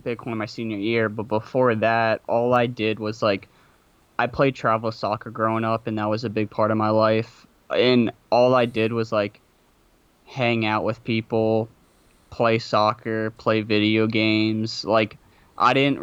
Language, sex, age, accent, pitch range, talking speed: English, male, 20-39, American, 110-120 Hz, 170 wpm